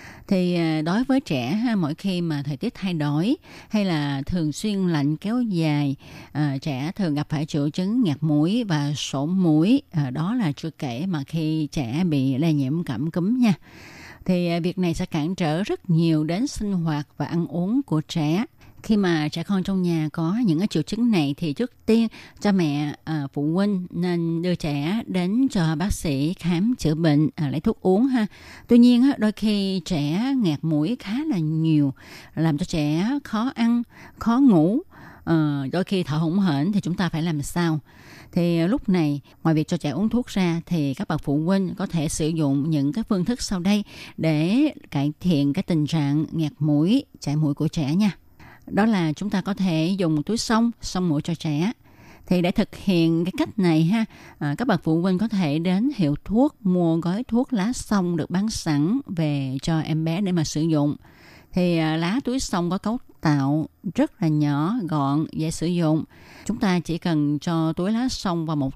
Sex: female